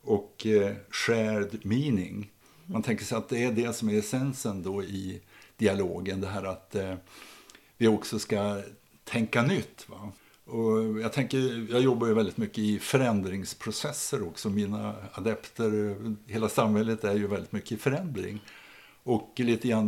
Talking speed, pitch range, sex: 155 wpm, 100-115 Hz, male